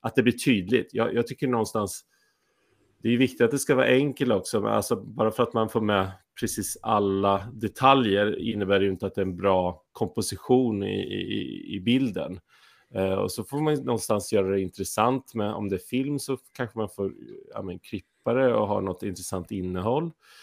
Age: 30-49